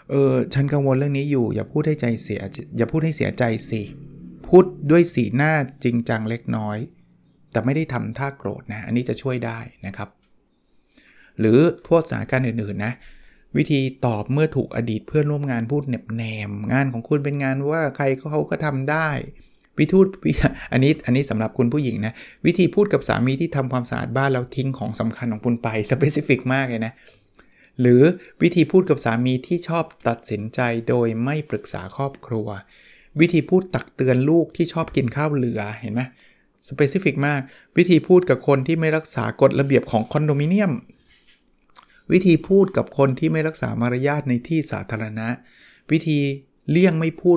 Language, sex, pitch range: Thai, male, 120-155 Hz